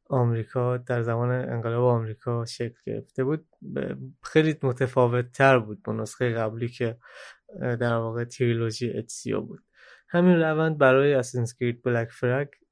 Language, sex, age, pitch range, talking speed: Persian, male, 20-39, 120-145 Hz, 125 wpm